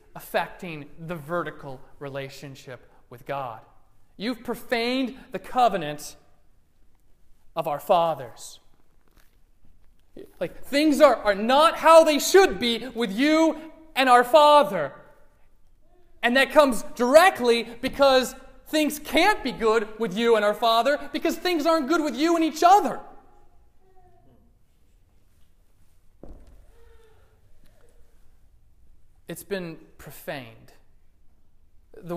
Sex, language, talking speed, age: male, English, 100 wpm, 30-49